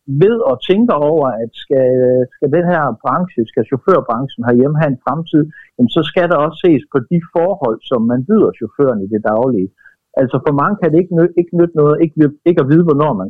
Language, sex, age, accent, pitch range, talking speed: Danish, male, 60-79, native, 120-160 Hz, 210 wpm